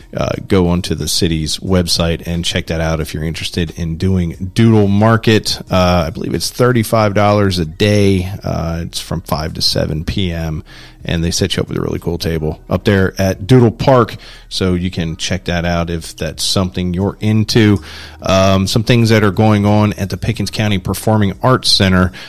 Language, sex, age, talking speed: English, male, 40-59, 190 wpm